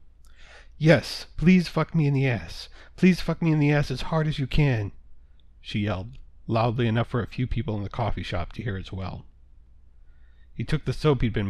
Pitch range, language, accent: 85-130 Hz, English, American